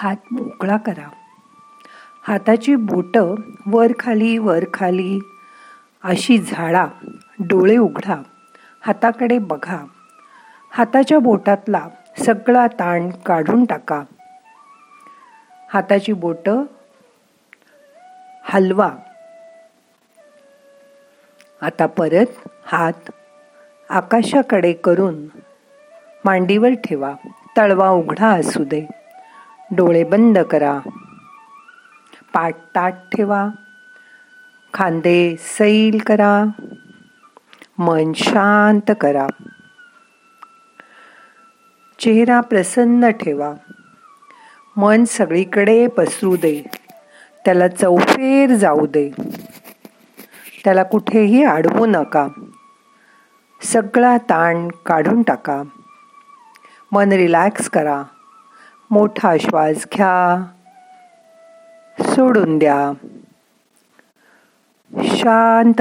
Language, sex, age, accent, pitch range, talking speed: Marathi, female, 50-69, native, 185-280 Hz, 50 wpm